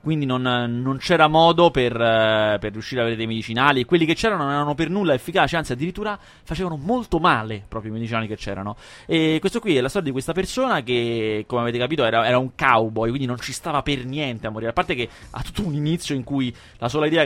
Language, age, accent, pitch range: Italian, 20-39, native, 120-160 Hz